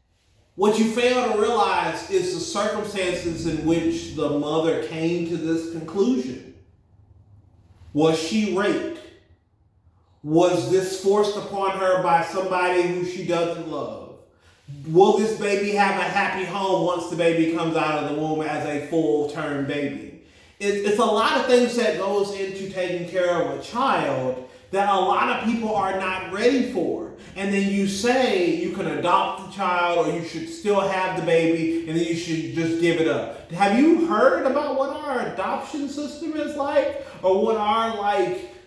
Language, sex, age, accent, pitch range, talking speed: English, male, 30-49, American, 165-245 Hz, 170 wpm